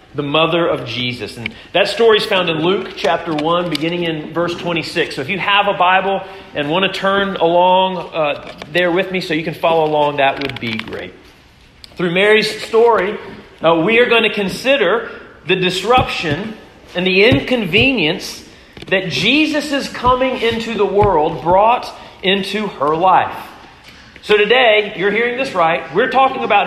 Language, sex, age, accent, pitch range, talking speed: English, male, 40-59, American, 175-230 Hz, 165 wpm